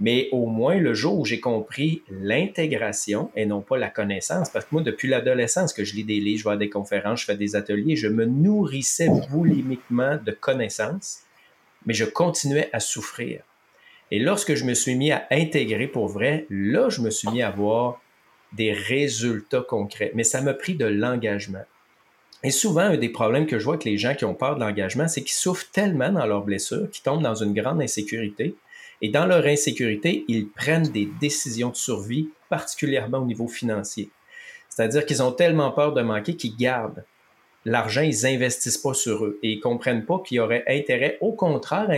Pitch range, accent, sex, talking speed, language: 110-150 Hz, Canadian, male, 200 wpm, French